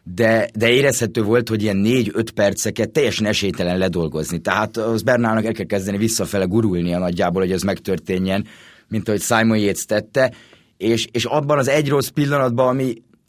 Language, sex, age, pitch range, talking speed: Hungarian, male, 30-49, 105-120 Hz, 165 wpm